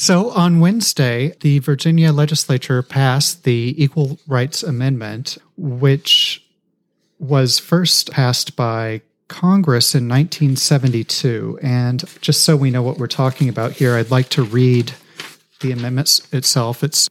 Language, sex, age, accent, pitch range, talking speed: English, male, 40-59, American, 115-150 Hz, 130 wpm